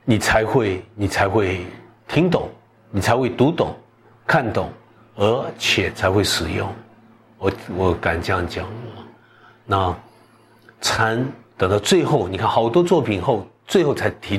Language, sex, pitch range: Chinese, male, 100-120 Hz